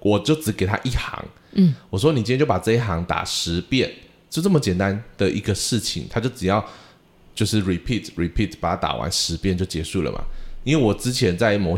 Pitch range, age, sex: 95-125 Hz, 20-39, male